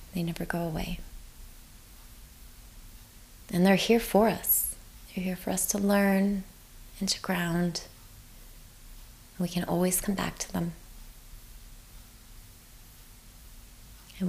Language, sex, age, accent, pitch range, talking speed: English, female, 20-39, American, 110-180 Hz, 110 wpm